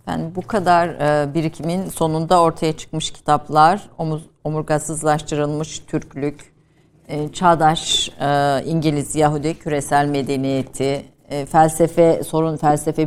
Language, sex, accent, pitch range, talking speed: Turkish, female, native, 145-175 Hz, 105 wpm